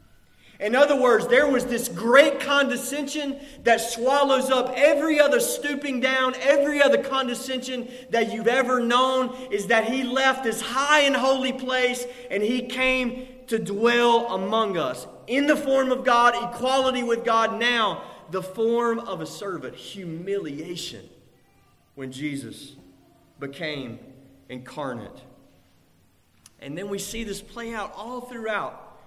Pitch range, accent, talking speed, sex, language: 200-260 Hz, American, 135 wpm, male, English